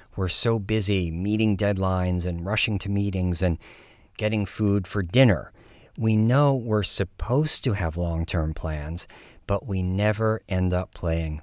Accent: American